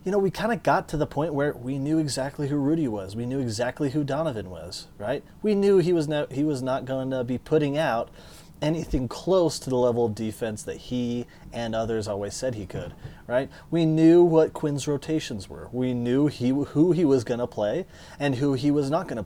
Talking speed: 230 wpm